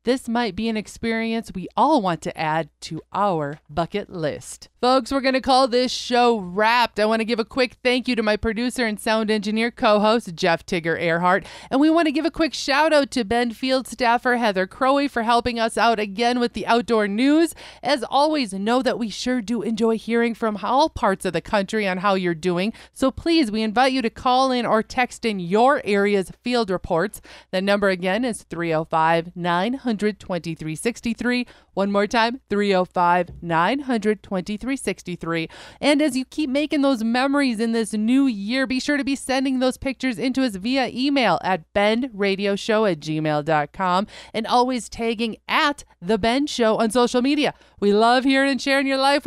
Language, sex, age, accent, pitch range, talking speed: English, female, 30-49, American, 195-255 Hz, 185 wpm